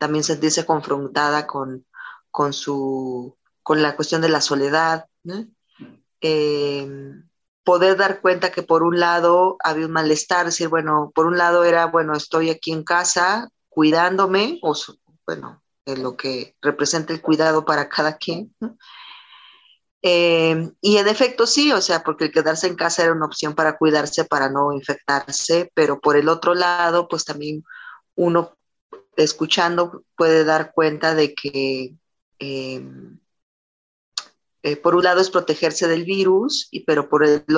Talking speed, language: 155 wpm, Spanish